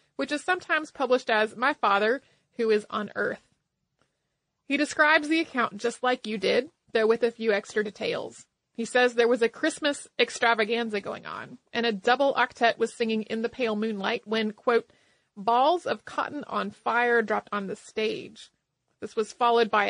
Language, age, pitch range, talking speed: English, 30-49, 215-270 Hz, 180 wpm